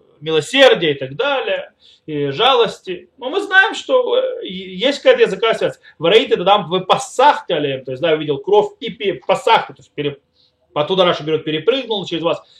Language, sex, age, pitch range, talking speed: Russian, male, 30-49, 145-225 Hz, 155 wpm